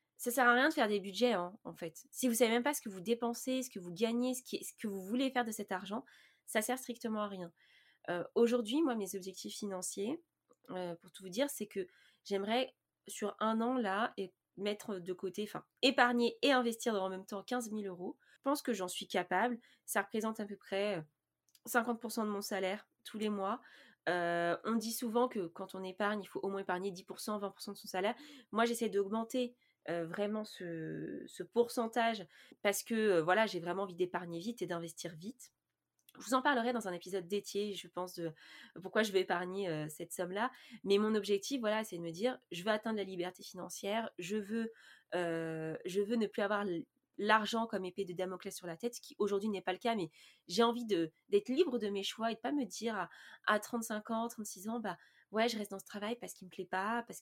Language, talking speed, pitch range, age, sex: French, 230 wpm, 185-235 Hz, 20-39, female